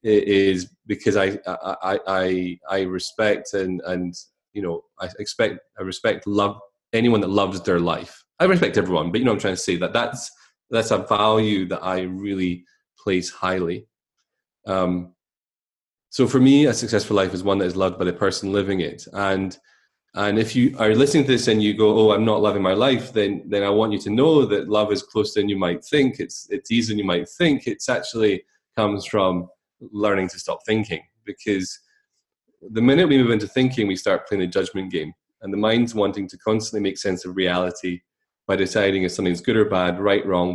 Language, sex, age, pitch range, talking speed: English, male, 20-39, 90-110 Hz, 205 wpm